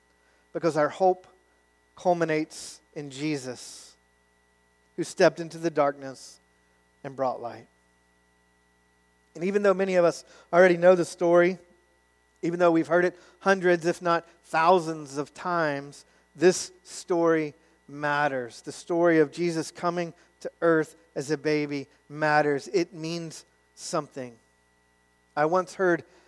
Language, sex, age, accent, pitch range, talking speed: English, male, 40-59, American, 120-170 Hz, 125 wpm